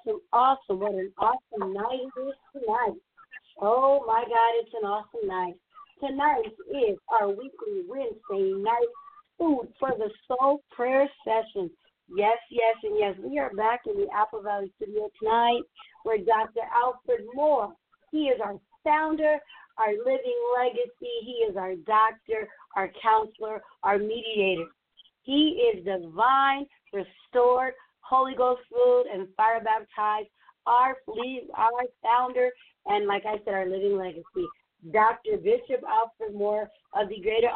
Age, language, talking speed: 50-69, English, 140 wpm